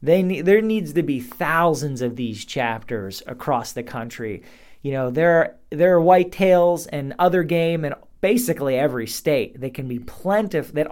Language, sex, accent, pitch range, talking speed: English, male, American, 130-170 Hz, 180 wpm